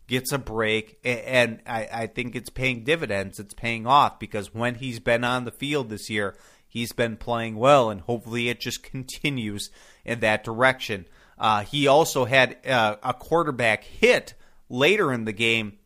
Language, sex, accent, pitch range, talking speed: English, male, American, 110-135 Hz, 170 wpm